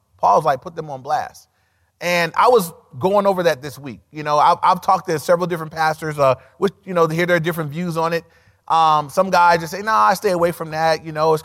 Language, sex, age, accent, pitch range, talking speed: English, male, 30-49, American, 145-185 Hz, 255 wpm